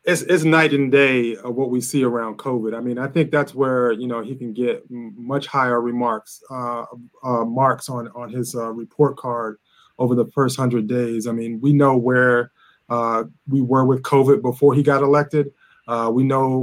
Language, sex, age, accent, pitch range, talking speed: English, male, 20-39, American, 120-140 Hz, 205 wpm